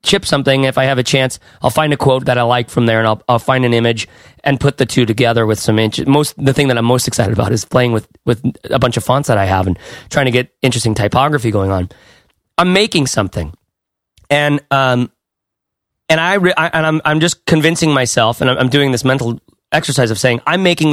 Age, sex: 30-49, male